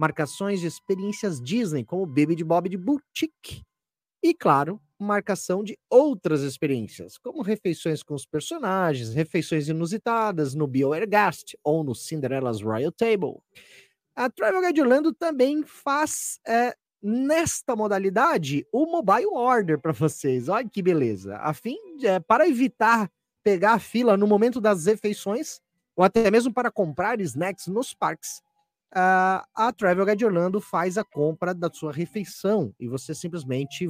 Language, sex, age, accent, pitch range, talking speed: Portuguese, male, 30-49, Brazilian, 155-230 Hz, 145 wpm